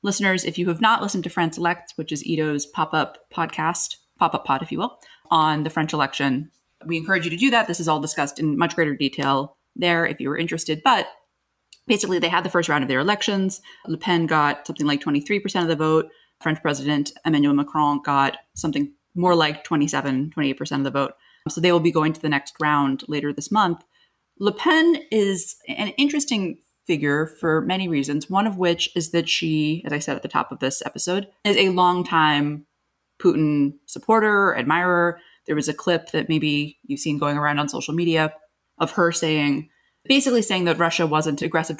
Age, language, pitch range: 30-49, English, 150-180 Hz